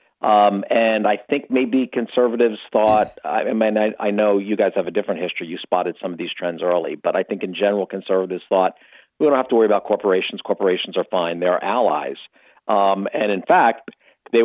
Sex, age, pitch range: male, 50-69, 95-120 Hz